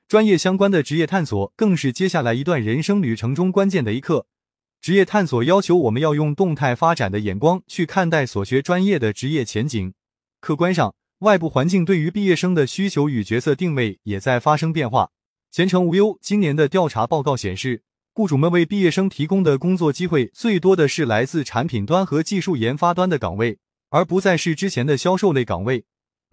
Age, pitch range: 20-39, 125-185 Hz